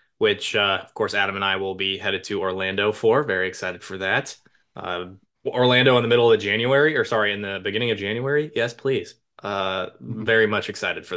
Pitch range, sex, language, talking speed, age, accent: 105-135 Hz, male, English, 205 wpm, 20-39, American